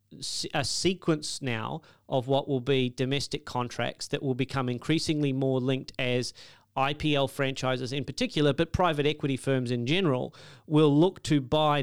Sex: male